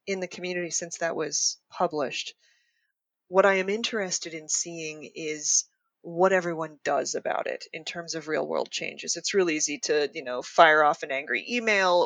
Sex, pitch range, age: female, 165-230 Hz, 20-39